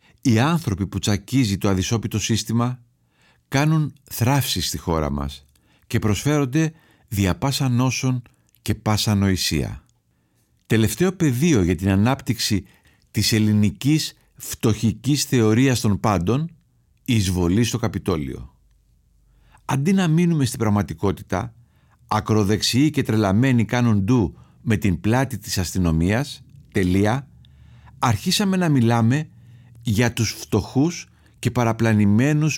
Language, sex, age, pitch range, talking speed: Greek, male, 50-69, 100-130 Hz, 110 wpm